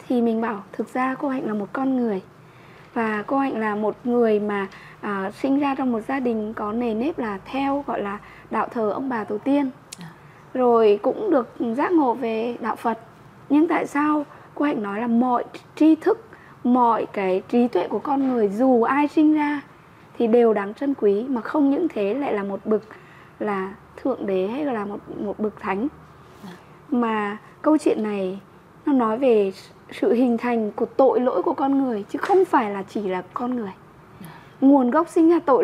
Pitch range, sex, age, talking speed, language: 210-280 Hz, female, 20-39, 200 wpm, Vietnamese